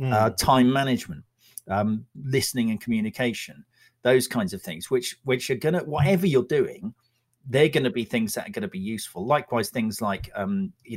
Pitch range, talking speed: 120-190 Hz, 190 wpm